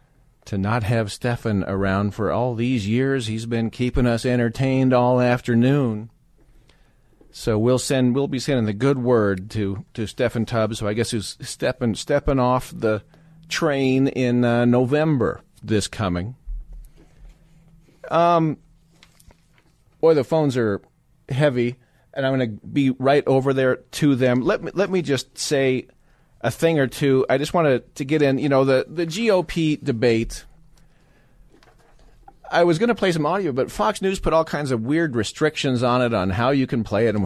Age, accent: 40-59, American